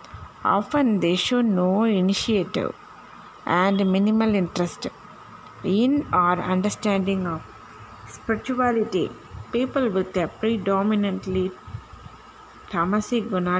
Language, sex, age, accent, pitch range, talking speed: Tamil, female, 20-39, native, 180-220 Hz, 85 wpm